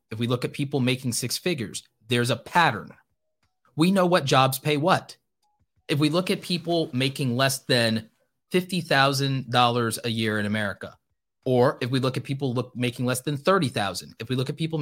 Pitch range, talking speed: 110-140 Hz, 180 wpm